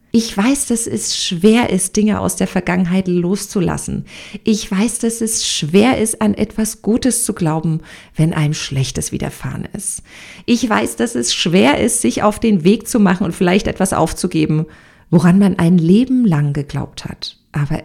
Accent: German